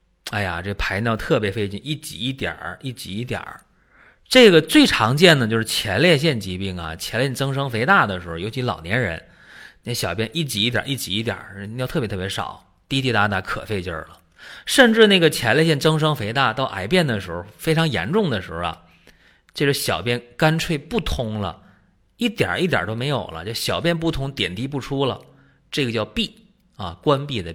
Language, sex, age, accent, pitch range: Chinese, male, 30-49, native, 105-170 Hz